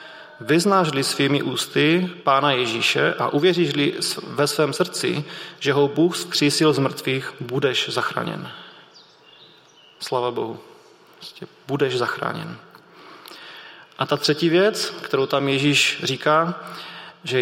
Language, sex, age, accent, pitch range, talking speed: Czech, male, 30-49, native, 135-160 Hz, 105 wpm